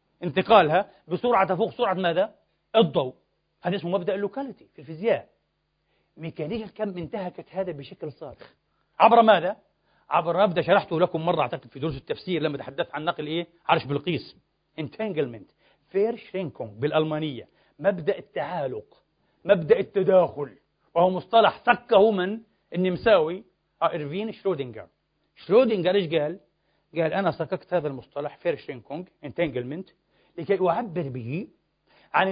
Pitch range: 170-230 Hz